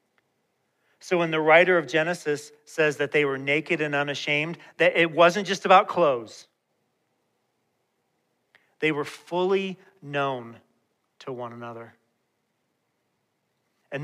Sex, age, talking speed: male, 40-59, 115 wpm